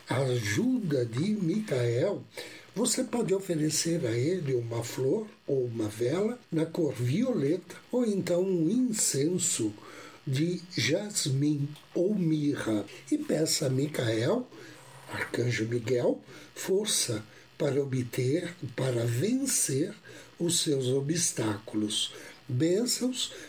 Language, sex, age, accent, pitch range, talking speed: Portuguese, male, 60-79, Brazilian, 125-180 Hz, 100 wpm